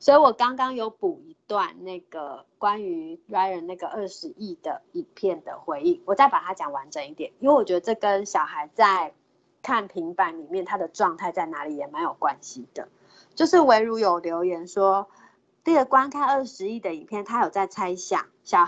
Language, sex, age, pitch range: Chinese, female, 30-49, 185-285 Hz